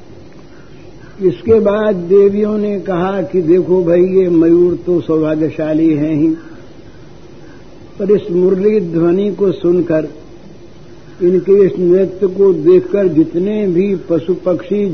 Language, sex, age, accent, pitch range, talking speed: Hindi, male, 60-79, native, 160-190 Hz, 115 wpm